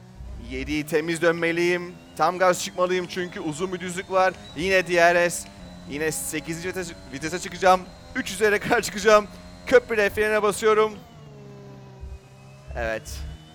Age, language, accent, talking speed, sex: 30-49, Turkish, native, 110 wpm, male